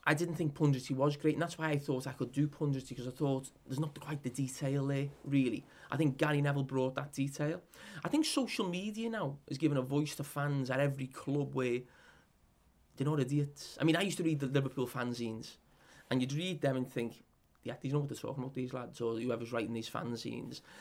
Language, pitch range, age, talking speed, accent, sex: English, 130-160 Hz, 30-49, 230 wpm, British, male